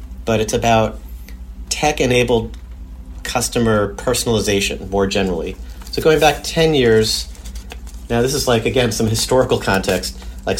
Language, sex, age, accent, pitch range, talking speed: English, male, 40-59, American, 85-115 Hz, 130 wpm